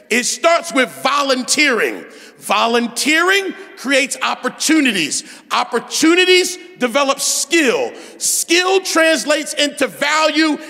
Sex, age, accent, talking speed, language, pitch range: male, 40-59, American, 80 wpm, English, 265-340 Hz